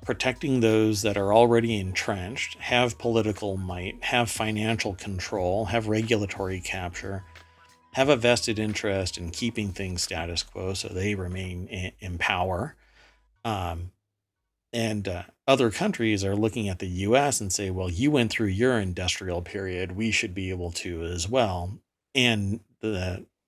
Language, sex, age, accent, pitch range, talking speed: English, male, 40-59, American, 90-115 Hz, 145 wpm